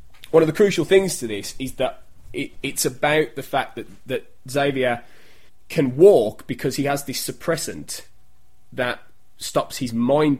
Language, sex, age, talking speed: English, male, 20-39, 160 wpm